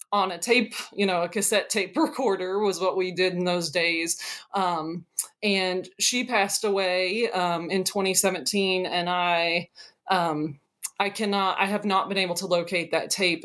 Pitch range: 170-205 Hz